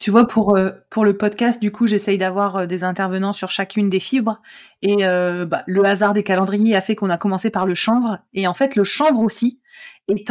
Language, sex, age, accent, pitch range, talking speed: French, female, 30-49, French, 195-240 Hz, 220 wpm